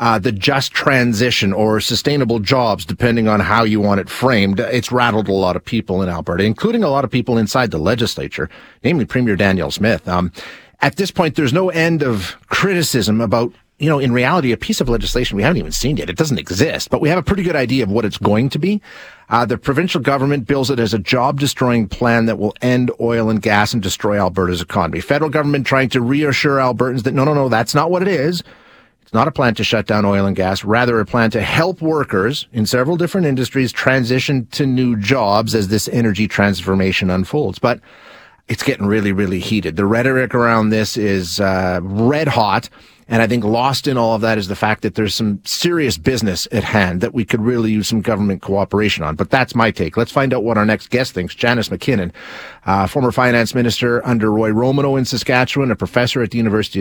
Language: English